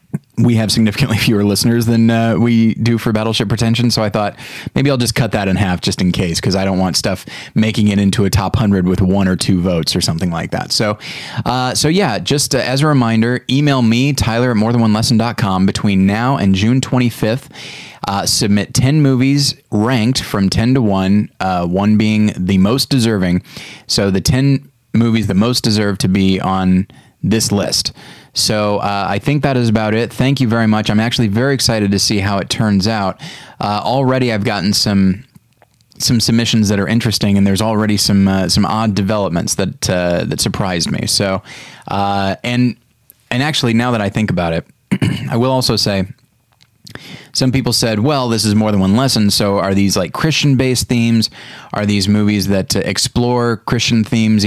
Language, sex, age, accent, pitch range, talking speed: English, male, 30-49, American, 100-125 Hz, 195 wpm